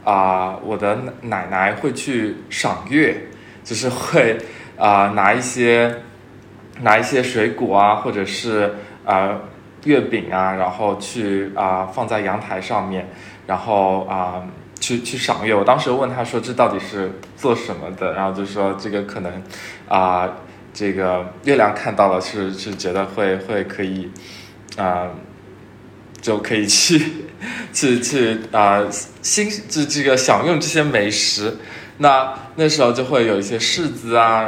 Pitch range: 95-115 Hz